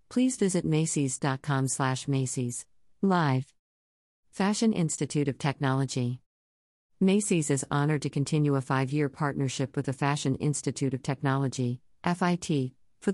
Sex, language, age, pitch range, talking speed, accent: female, English, 50-69, 130-155 Hz, 120 wpm, American